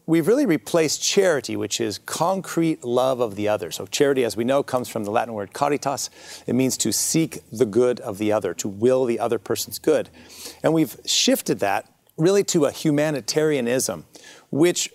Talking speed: 185 wpm